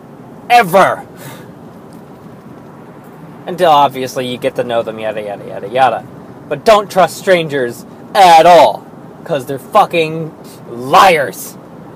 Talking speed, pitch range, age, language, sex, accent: 110 wpm, 150-220 Hz, 20-39, English, male, American